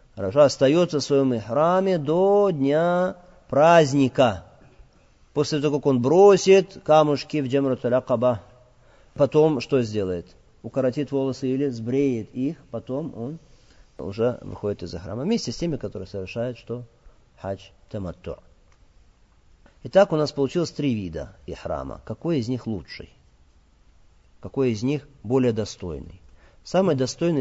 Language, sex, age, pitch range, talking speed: Russian, male, 40-59, 100-150 Hz, 125 wpm